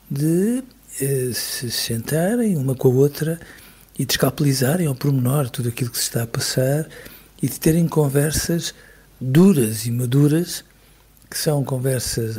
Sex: male